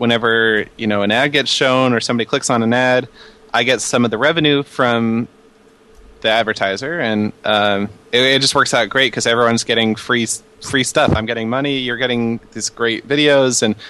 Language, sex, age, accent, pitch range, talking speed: English, male, 20-39, American, 105-120 Hz, 195 wpm